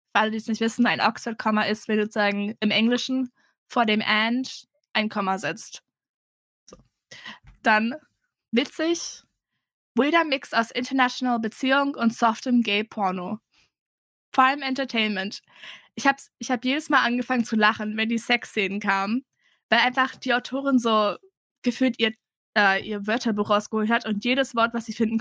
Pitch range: 220-265 Hz